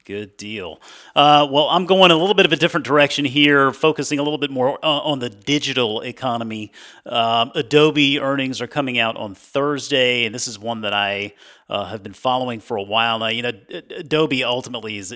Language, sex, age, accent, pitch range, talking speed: English, male, 30-49, American, 110-145 Hz, 200 wpm